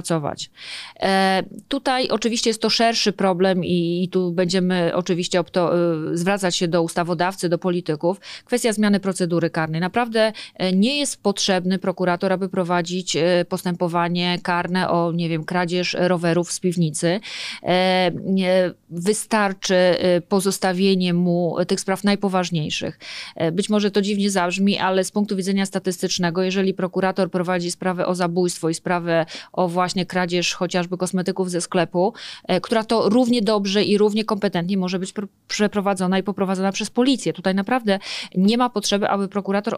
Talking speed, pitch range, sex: 135 wpm, 175-205 Hz, female